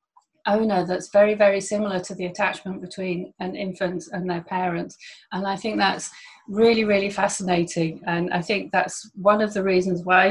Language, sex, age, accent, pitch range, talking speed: English, female, 30-49, British, 180-210 Hz, 175 wpm